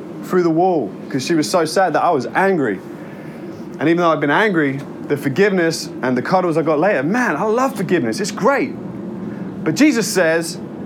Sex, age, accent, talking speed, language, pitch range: male, 30-49, British, 195 wpm, English, 175-230 Hz